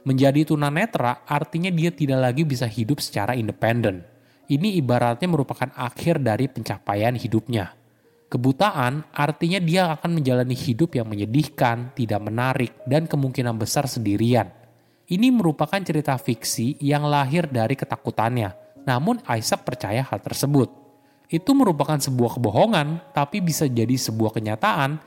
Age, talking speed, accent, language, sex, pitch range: 20-39, 125 wpm, native, Indonesian, male, 120-160 Hz